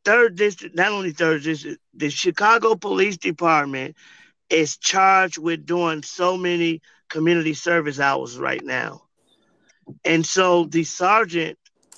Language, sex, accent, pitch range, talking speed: English, male, American, 150-180 Hz, 125 wpm